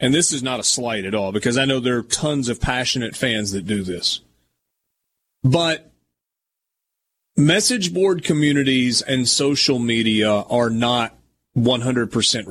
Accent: American